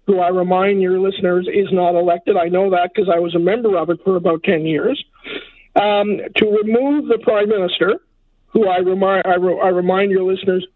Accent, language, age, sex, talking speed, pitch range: American, English, 50-69, male, 205 wpm, 190-225 Hz